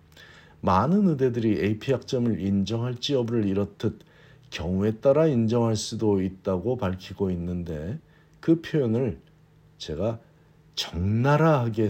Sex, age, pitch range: male, 50-69, 95-135 Hz